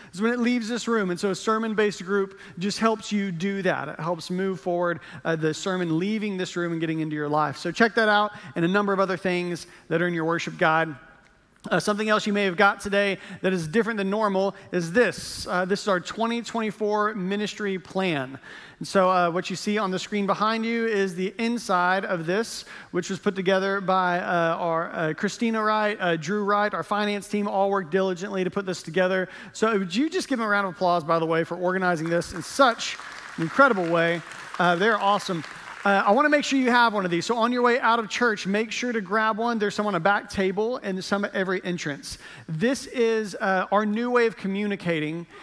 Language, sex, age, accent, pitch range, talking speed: English, male, 40-59, American, 180-215 Hz, 230 wpm